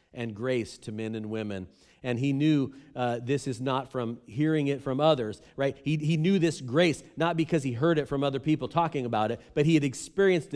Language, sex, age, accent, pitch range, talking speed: English, male, 40-59, American, 125-175 Hz, 220 wpm